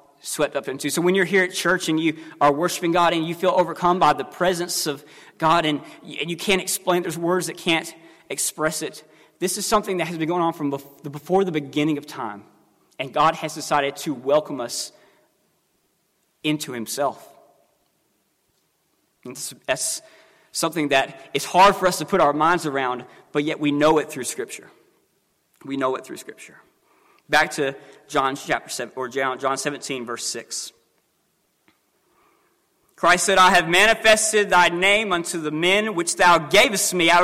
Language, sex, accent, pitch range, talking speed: English, male, American, 145-190 Hz, 170 wpm